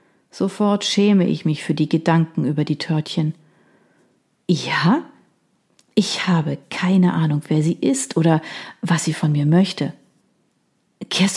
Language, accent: German, German